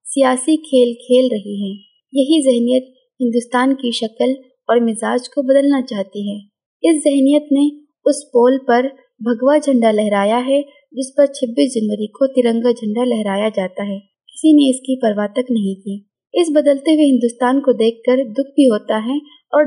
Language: Urdu